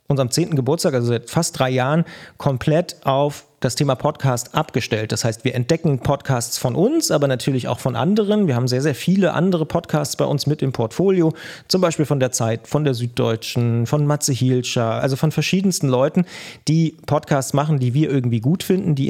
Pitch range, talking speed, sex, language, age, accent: 130-165 Hz, 195 wpm, male, German, 30-49, German